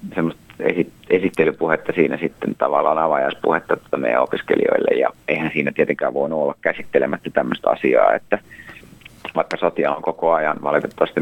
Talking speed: 140 wpm